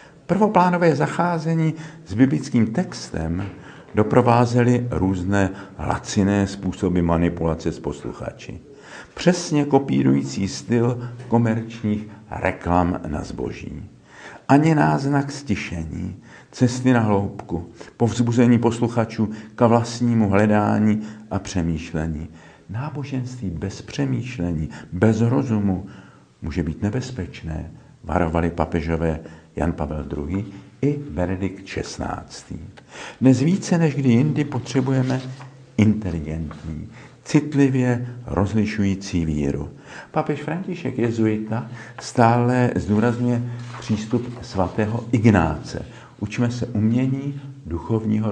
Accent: native